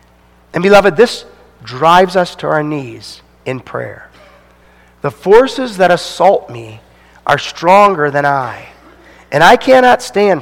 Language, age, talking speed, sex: English, 40-59, 130 wpm, male